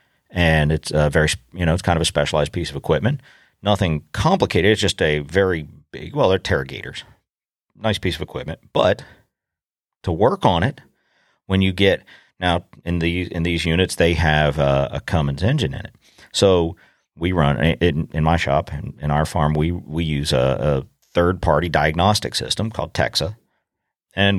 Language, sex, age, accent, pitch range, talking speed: English, male, 40-59, American, 80-95 Hz, 180 wpm